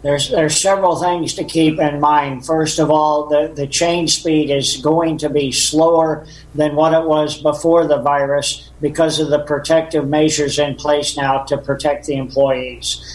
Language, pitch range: English, 145-160 Hz